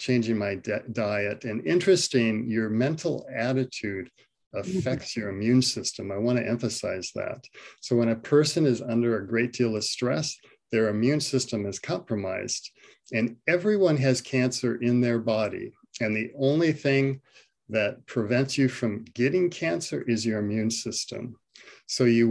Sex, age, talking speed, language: male, 50-69, 150 wpm, English